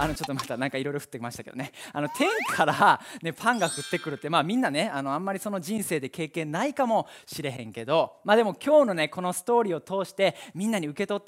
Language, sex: Japanese, male